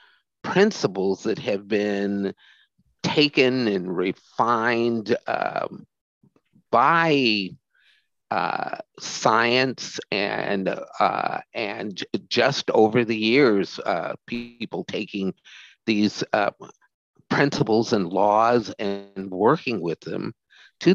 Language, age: English, 50-69